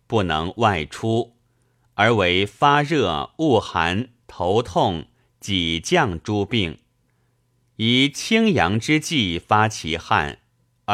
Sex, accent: male, native